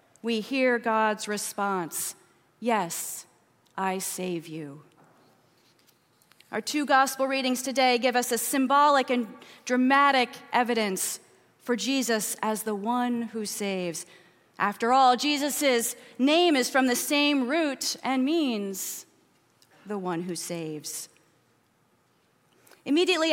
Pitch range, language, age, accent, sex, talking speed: 215-275 Hz, English, 30-49, American, female, 110 wpm